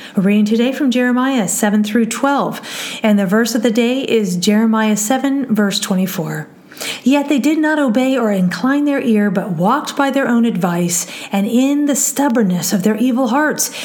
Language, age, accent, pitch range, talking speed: English, 40-59, American, 205-270 Hz, 180 wpm